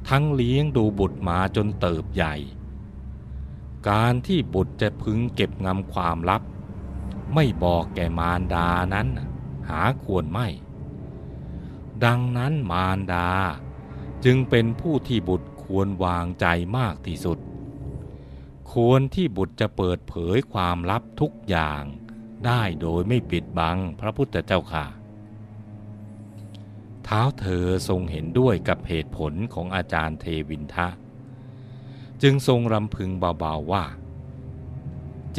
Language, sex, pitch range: Thai, male, 85-120 Hz